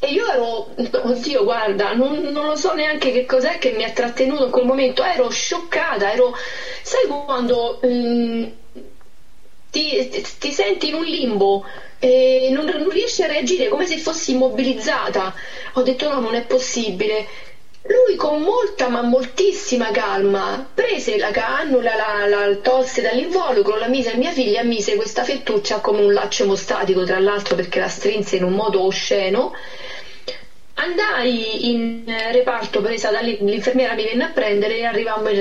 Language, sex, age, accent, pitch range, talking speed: Italian, female, 30-49, native, 220-360 Hz, 165 wpm